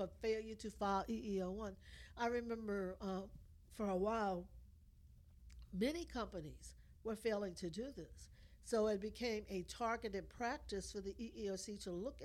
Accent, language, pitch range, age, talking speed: American, English, 180-225 Hz, 60-79, 140 wpm